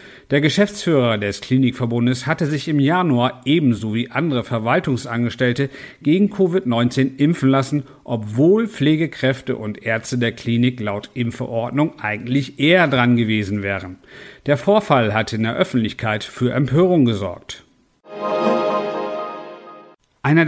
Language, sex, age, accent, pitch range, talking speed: German, male, 50-69, German, 115-150 Hz, 115 wpm